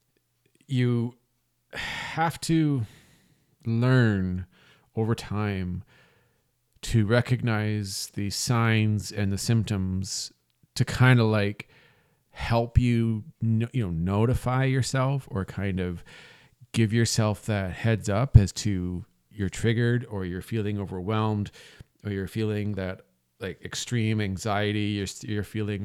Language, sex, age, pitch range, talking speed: English, male, 40-59, 100-120 Hz, 115 wpm